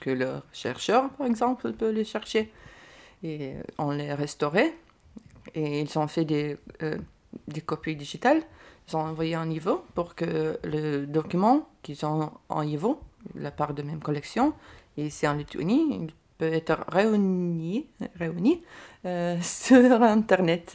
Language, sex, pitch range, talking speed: French, female, 150-185 Hz, 150 wpm